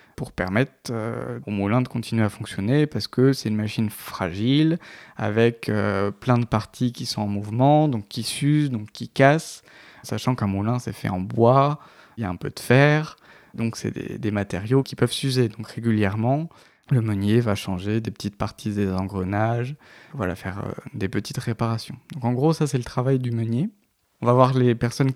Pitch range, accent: 110-130 Hz, French